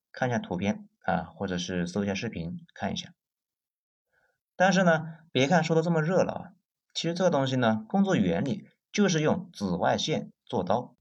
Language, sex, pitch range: Chinese, male, 115-185 Hz